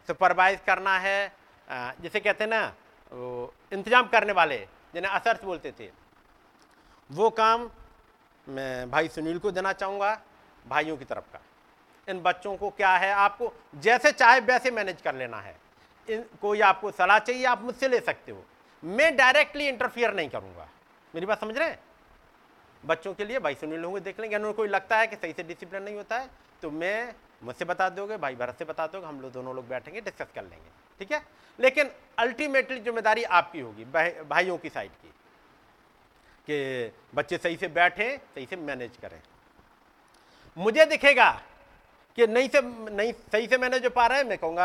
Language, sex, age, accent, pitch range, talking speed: Hindi, male, 50-69, native, 170-235 Hz, 130 wpm